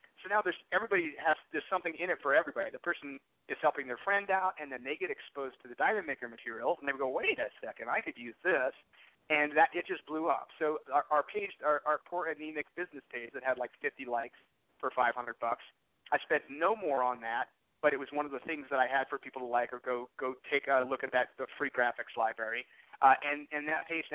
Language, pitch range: English, 130-160 Hz